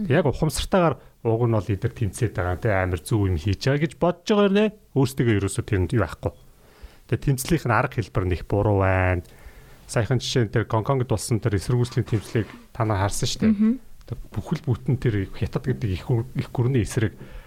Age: 40-59